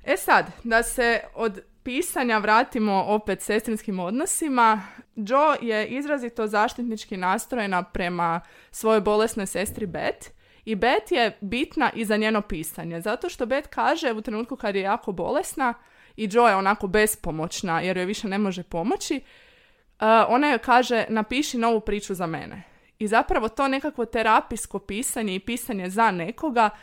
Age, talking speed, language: 20-39, 150 wpm, Croatian